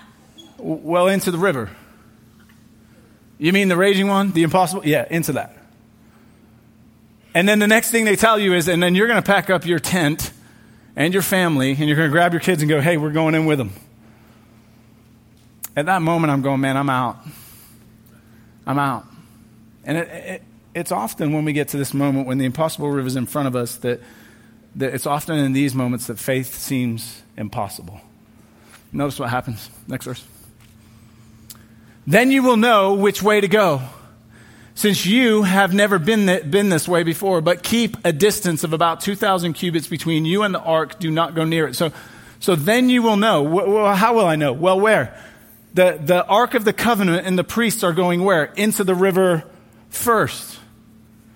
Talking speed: 185 wpm